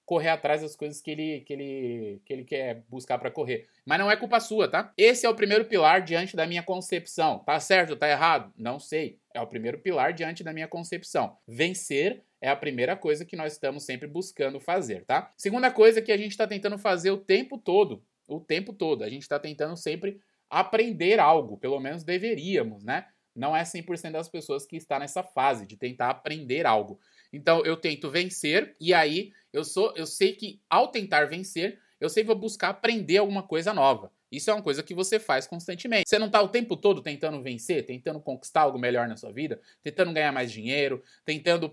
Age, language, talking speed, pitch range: 20-39, Portuguese, 210 wpm, 150-200 Hz